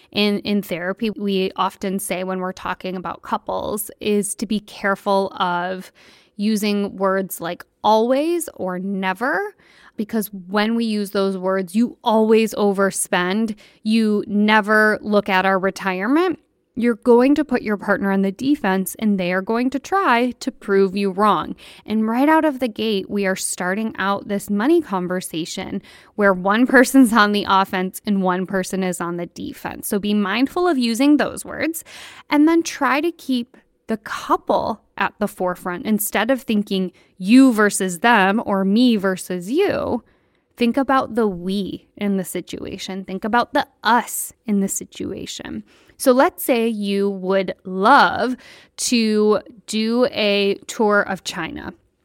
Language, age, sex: English, 20-39, female